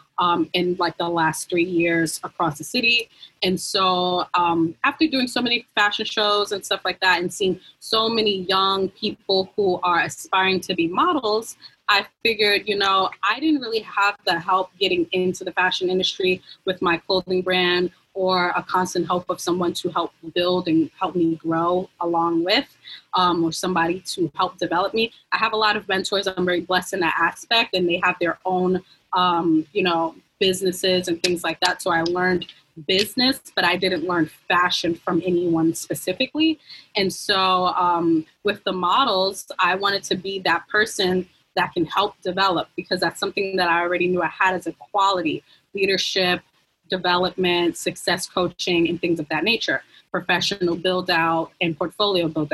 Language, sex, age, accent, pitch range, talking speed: English, female, 20-39, American, 175-195 Hz, 180 wpm